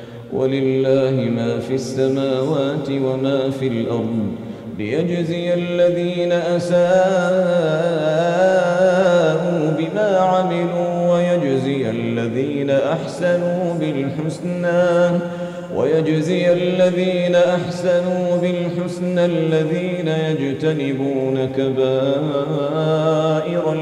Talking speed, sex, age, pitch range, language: 60 wpm, male, 40-59, 140-180 Hz, Arabic